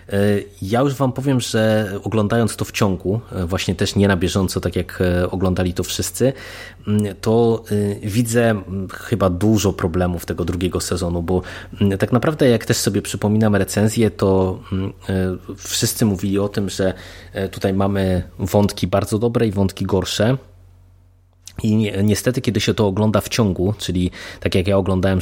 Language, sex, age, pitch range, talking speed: Polish, male, 20-39, 95-110 Hz, 150 wpm